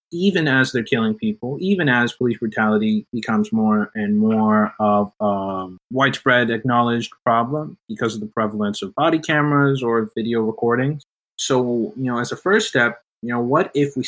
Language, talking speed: English, 170 wpm